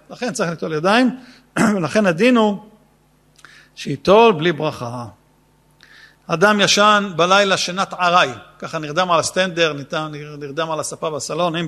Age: 50-69